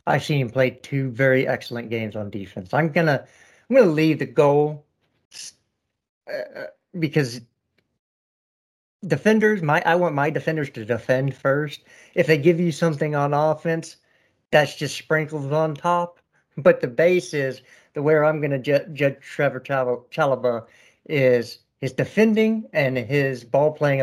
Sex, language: male, English